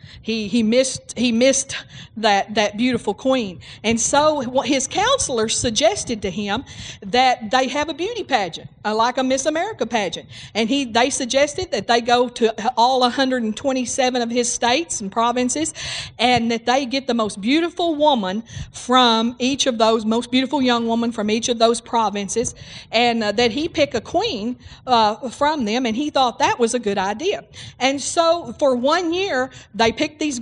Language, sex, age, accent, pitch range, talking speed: English, female, 40-59, American, 215-265 Hz, 175 wpm